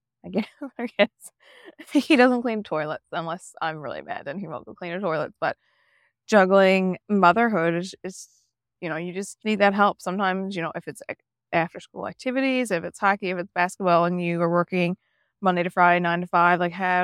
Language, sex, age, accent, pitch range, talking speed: English, female, 20-39, American, 165-195 Hz, 195 wpm